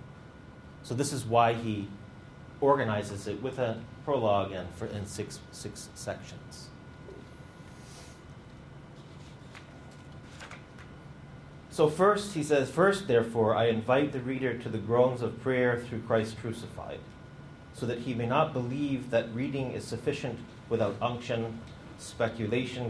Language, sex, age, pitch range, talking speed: English, male, 30-49, 100-125 Hz, 120 wpm